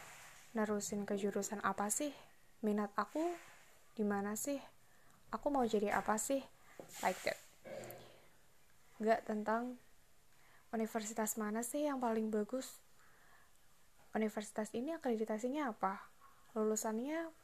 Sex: female